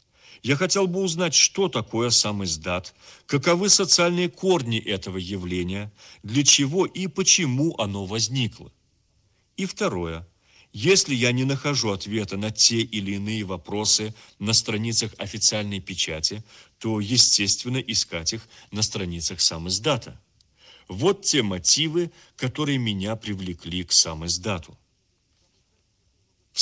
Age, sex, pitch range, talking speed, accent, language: 40-59, male, 100-145 Hz, 120 wpm, native, Russian